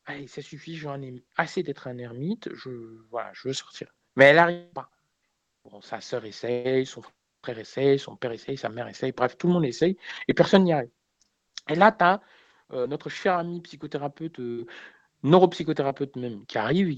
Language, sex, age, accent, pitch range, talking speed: French, male, 50-69, French, 120-160 Hz, 195 wpm